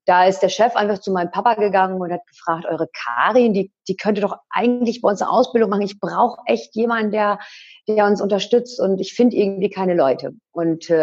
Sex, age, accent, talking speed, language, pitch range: female, 40-59, German, 210 wpm, German, 180-230 Hz